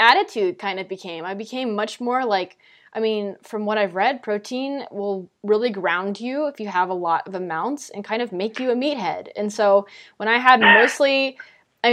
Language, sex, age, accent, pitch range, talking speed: English, female, 20-39, American, 195-235 Hz, 205 wpm